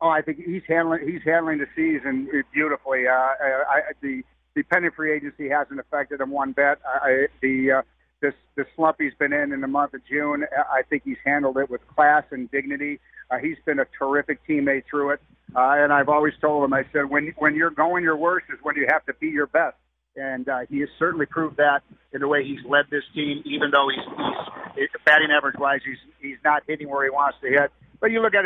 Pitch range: 135-155 Hz